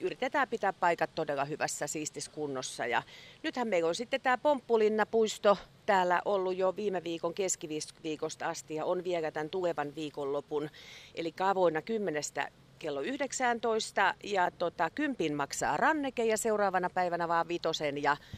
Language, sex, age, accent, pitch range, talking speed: Finnish, female, 40-59, native, 155-210 Hz, 140 wpm